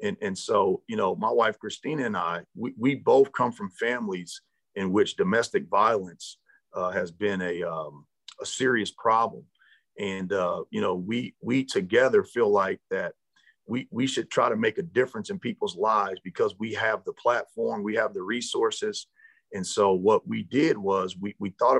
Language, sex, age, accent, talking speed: English, male, 40-59, American, 185 wpm